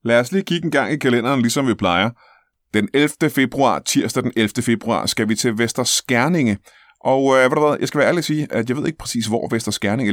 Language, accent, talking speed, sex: Danish, native, 245 wpm, male